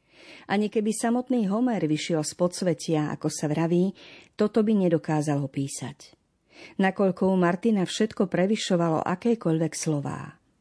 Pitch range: 165-205 Hz